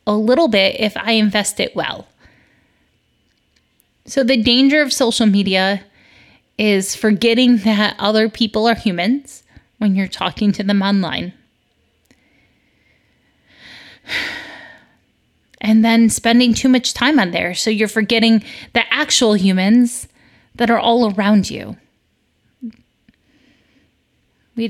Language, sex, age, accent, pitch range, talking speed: English, female, 20-39, American, 195-235 Hz, 115 wpm